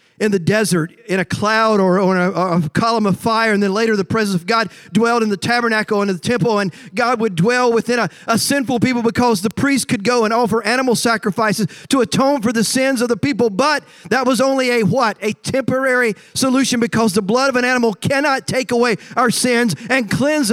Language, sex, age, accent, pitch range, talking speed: English, male, 40-59, American, 215-260 Hz, 220 wpm